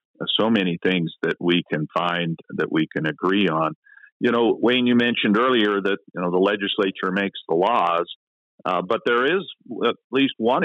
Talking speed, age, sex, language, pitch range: 185 wpm, 50-69, male, English, 90-105 Hz